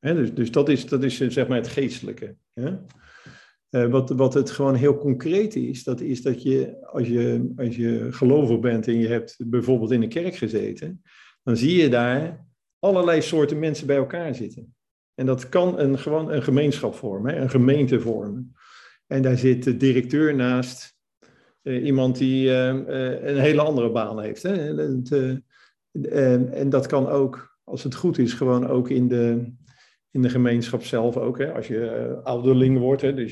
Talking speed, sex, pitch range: 180 wpm, male, 120-140 Hz